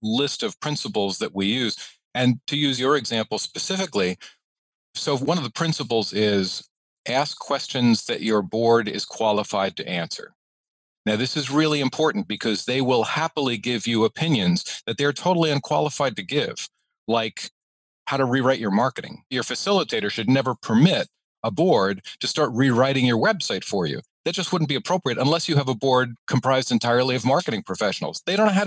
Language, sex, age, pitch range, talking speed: English, male, 40-59, 110-145 Hz, 175 wpm